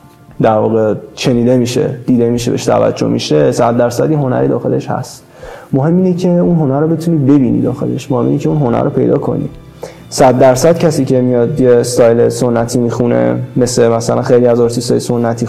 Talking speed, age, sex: 180 wpm, 20-39, male